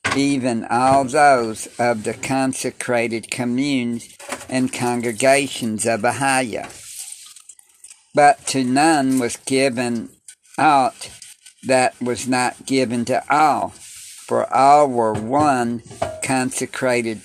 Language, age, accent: English, 60-79, American